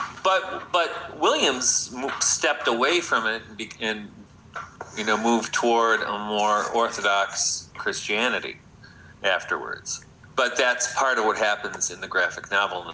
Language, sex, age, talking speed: English, male, 40-59, 130 wpm